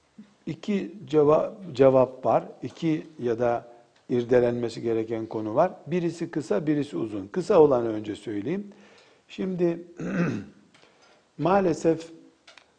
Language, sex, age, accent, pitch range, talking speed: Turkish, male, 60-79, native, 135-185 Hz, 100 wpm